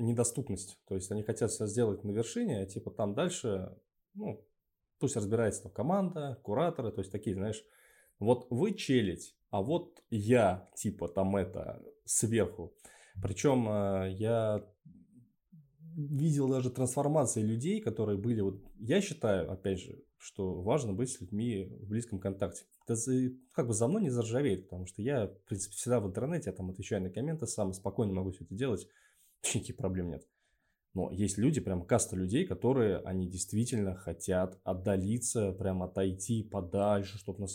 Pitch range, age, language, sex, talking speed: 95-125 Hz, 20-39, Russian, male, 160 wpm